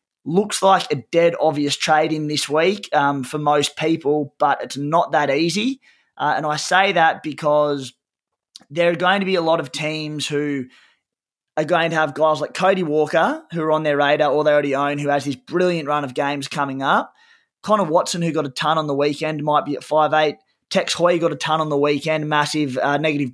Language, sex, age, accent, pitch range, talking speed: English, male, 20-39, Australian, 145-165 Hz, 215 wpm